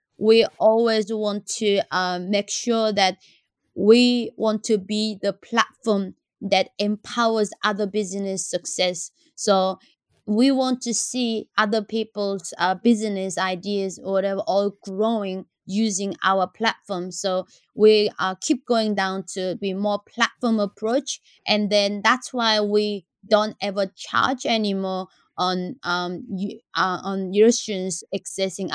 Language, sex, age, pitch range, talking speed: English, female, 20-39, 190-220 Hz, 130 wpm